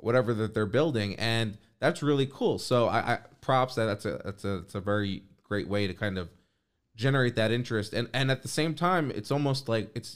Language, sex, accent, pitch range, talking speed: English, male, American, 100-135 Hz, 225 wpm